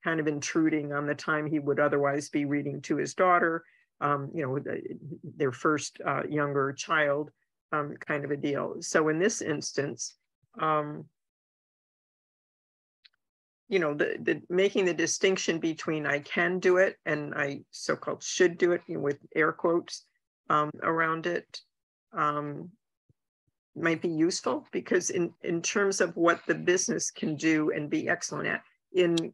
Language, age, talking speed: English, 50-69, 150 wpm